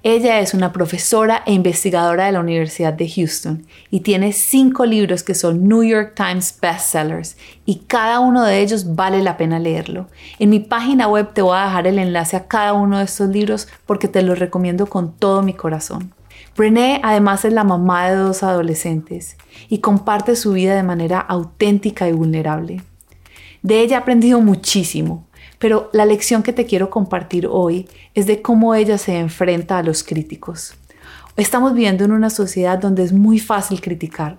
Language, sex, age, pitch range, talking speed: Spanish, female, 30-49, 170-215 Hz, 180 wpm